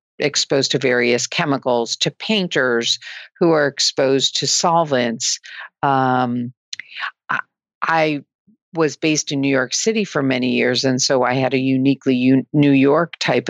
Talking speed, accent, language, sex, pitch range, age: 140 wpm, American, English, female, 125-145 Hz, 50-69